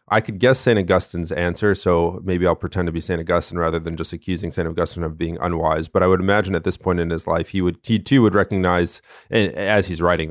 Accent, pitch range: American, 85-100 Hz